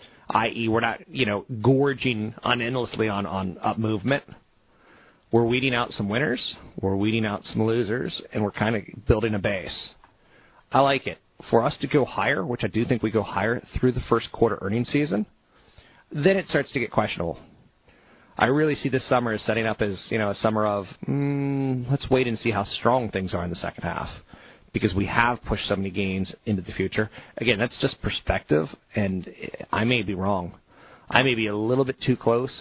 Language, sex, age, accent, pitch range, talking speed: English, male, 30-49, American, 105-130 Hz, 200 wpm